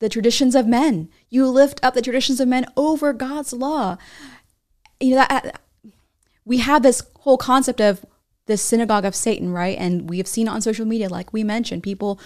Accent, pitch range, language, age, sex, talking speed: American, 185-230 Hz, English, 20-39, female, 200 wpm